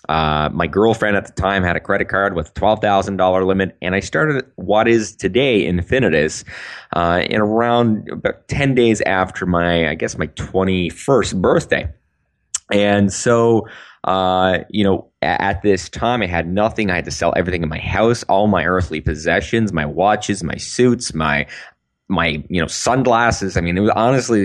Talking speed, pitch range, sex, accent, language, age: 180 wpm, 85-110 Hz, male, American, English, 20-39